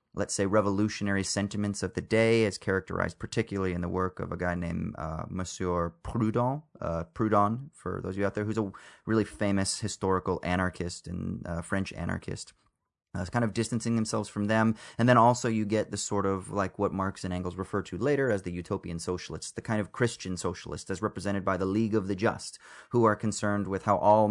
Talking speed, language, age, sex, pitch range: 205 wpm, English, 30-49, male, 90-110 Hz